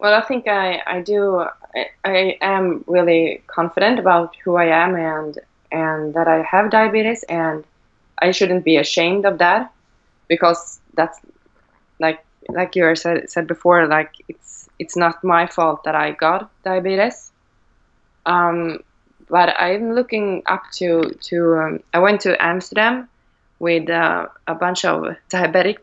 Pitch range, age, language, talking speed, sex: 165-195 Hz, 20-39, English, 150 wpm, female